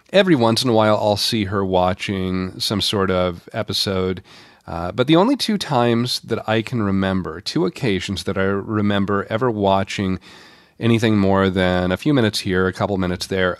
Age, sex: 40-59, male